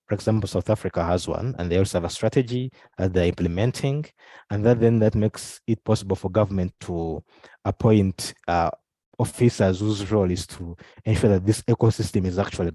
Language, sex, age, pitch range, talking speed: English, male, 20-39, 95-120 Hz, 185 wpm